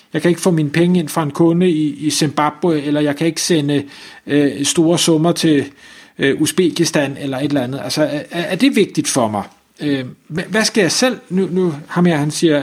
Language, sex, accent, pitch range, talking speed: Danish, male, native, 135-175 Hz, 215 wpm